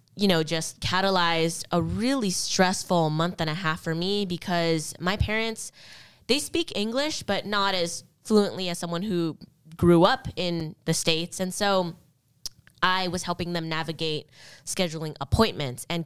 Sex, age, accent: female, 20-39, American